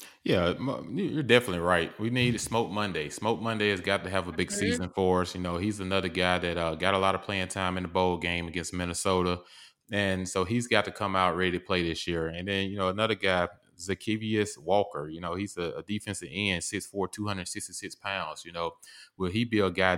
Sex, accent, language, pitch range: male, American, English, 90-105 Hz